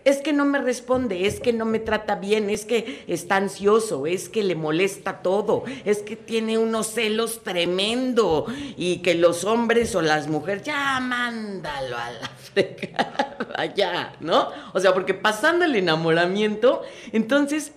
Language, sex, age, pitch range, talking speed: Spanish, female, 40-59, 160-225 Hz, 160 wpm